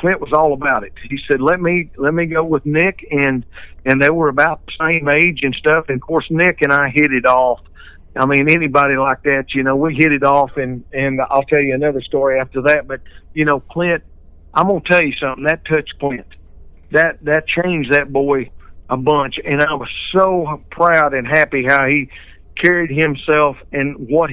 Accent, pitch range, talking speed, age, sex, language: American, 140-180 Hz, 210 wpm, 50-69, male, English